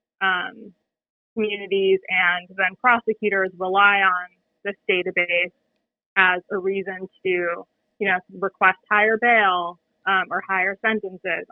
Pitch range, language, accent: 185-210 Hz, English, American